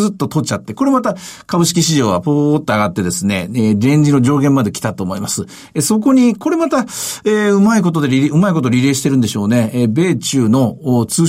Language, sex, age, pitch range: Japanese, male, 50-69, 125-180 Hz